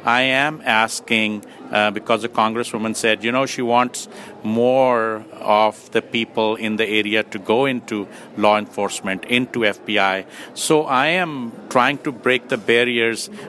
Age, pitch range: 50-69, 110-130 Hz